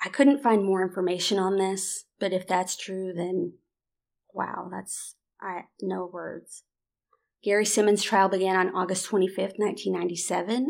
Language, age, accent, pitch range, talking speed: English, 30-49, American, 190-220 Hz, 140 wpm